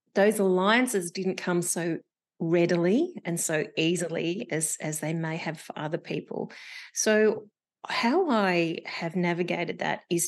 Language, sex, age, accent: English, female, 30-49, Australian